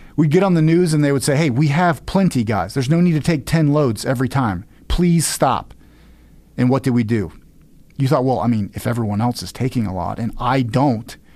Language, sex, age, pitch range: English, male, 40-59, 110-135 Hz